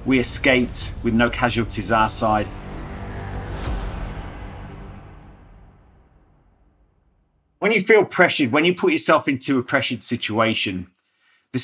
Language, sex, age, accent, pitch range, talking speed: English, male, 40-59, British, 105-130 Hz, 105 wpm